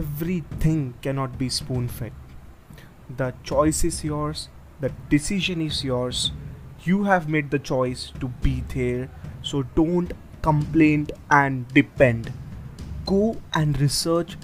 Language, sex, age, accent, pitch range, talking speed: English, male, 20-39, Indian, 130-155 Hz, 115 wpm